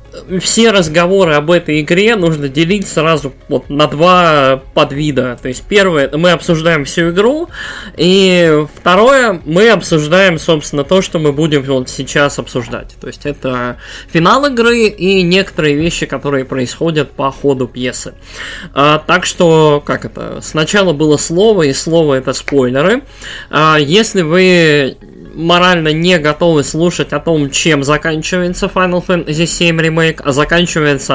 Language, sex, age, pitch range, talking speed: Russian, male, 20-39, 140-180 Hz, 135 wpm